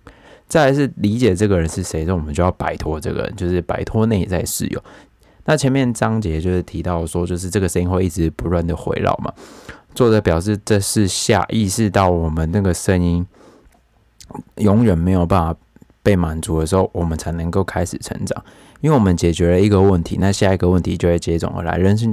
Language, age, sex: Chinese, 20-39, male